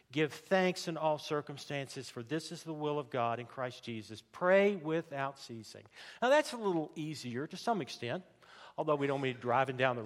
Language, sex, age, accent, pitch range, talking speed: English, male, 50-69, American, 125-160 Hz, 195 wpm